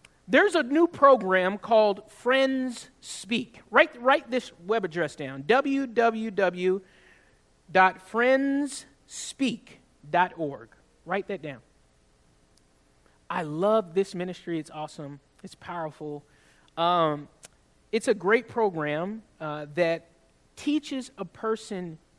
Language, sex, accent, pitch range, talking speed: English, male, American, 175-235 Hz, 95 wpm